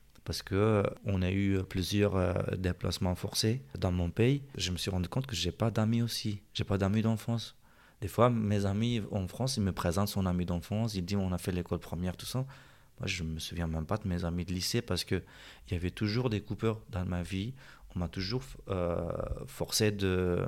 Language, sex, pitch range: French, male, 90-105 Hz